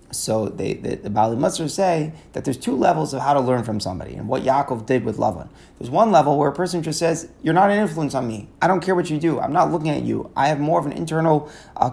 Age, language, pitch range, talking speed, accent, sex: 30-49, English, 135-175 Hz, 270 wpm, American, male